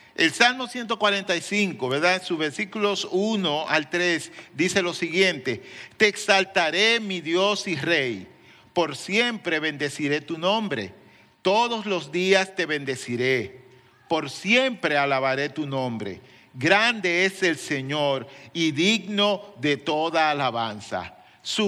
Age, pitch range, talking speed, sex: 50-69, 150-200 Hz, 120 wpm, male